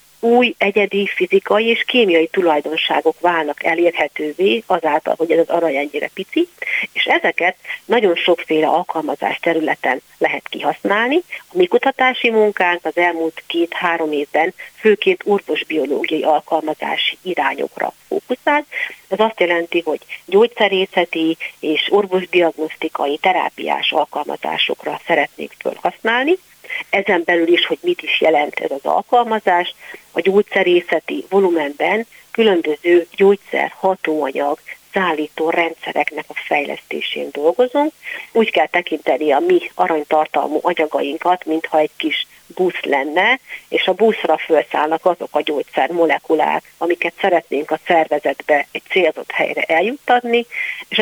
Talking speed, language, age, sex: 110 wpm, Hungarian, 50-69, female